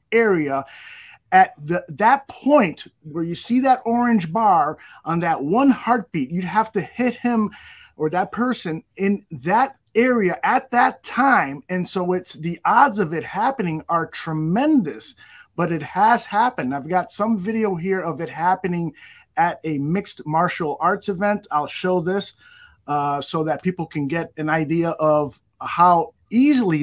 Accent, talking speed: American, 155 wpm